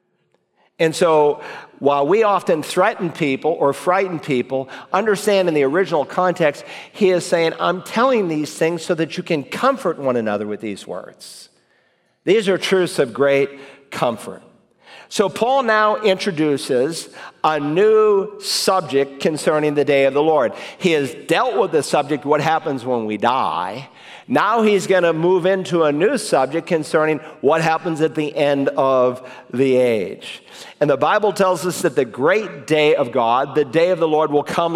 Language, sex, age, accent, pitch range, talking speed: English, male, 50-69, American, 135-175 Hz, 170 wpm